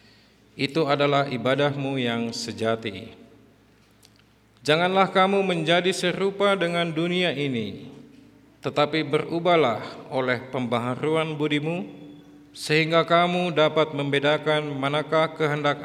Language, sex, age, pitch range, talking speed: Indonesian, male, 50-69, 125-160 Hz, 85 wpm